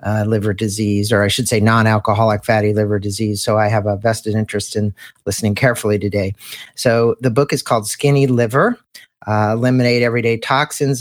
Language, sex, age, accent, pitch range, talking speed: English, male, 40-59, American, 110-130 Hz, 175 wpm